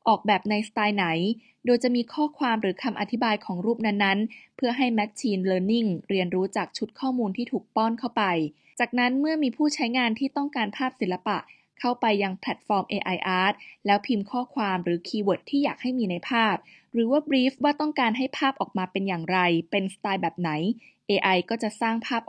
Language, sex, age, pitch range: Thai, female, 20-39, 185-240 Hz